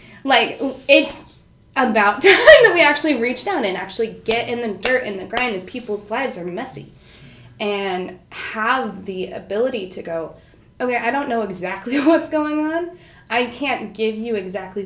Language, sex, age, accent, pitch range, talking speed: English, female, 20-39, American, 190-250 Hz, 170 wpm